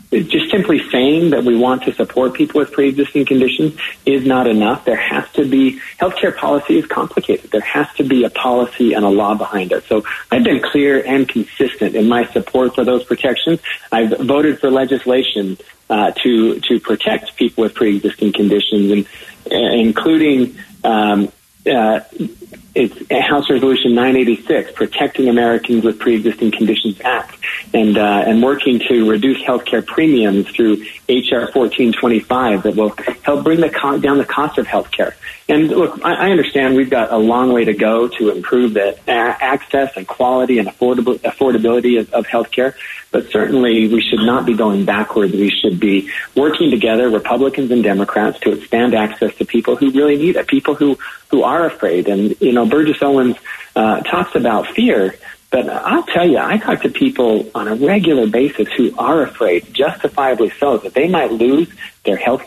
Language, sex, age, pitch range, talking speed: English, male, 40-59, 110-135 Hz, 180 wpm